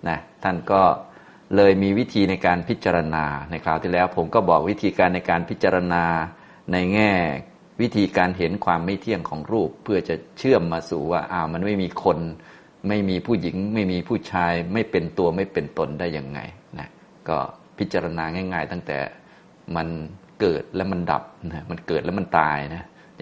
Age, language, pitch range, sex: 20-39, Thai, 80-95 Hz, male